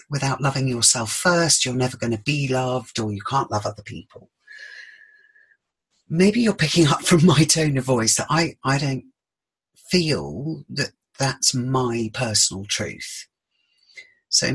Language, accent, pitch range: English, British, 120-165 Hz